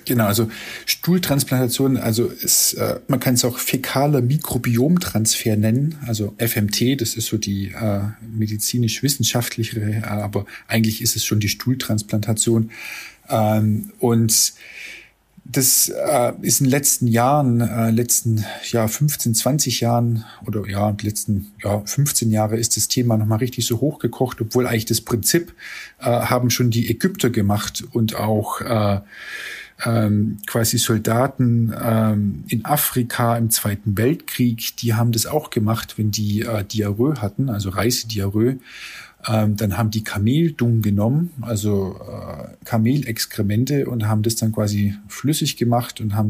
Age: 40-59